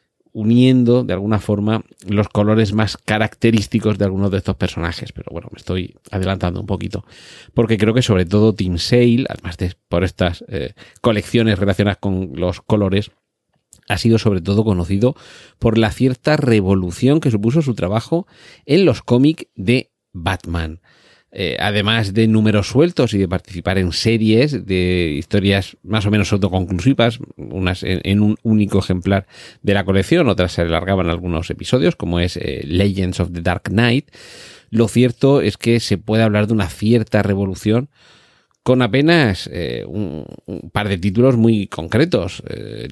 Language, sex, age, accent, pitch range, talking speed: Spanish, male, 40-59, Spanish, 95-120 Hz, 160 wpm